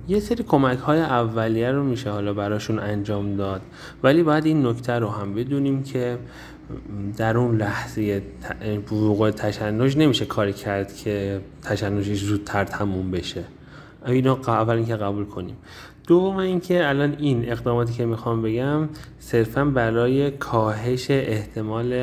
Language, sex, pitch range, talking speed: Persian, male, 105-125 Hz, 135 wpm